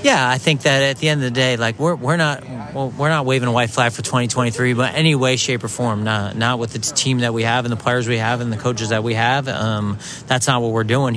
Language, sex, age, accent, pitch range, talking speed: English, male, 30-49, American, 115-130 Hz, 305 wpm